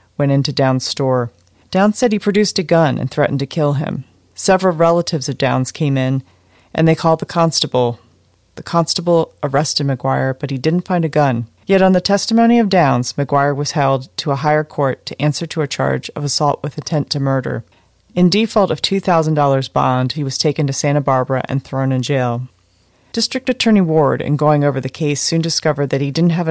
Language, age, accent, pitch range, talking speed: English, 40-59, American, 130-170 Hz, 200 wpm